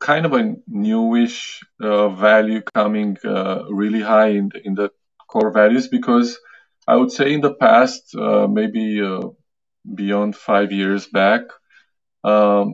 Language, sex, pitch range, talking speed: English, male, 105-175 Hz, 145 wpm